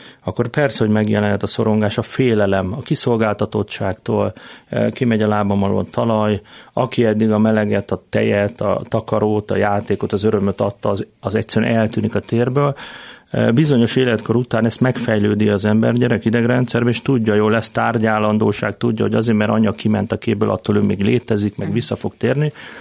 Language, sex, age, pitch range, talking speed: Hungarian, male, 30-49, 105-120 Hz, 170 wpm